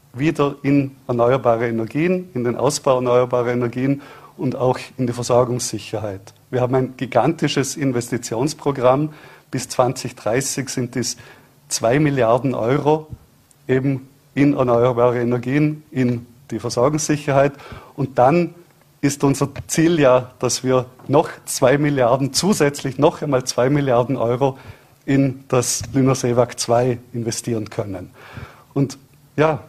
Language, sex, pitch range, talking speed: German, male, 125-145 Hz, 115 wpm